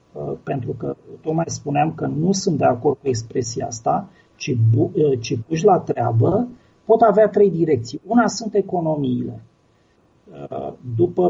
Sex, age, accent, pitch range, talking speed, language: male, 40-59, native, 140-195 Hz, 135 wpm, Romanian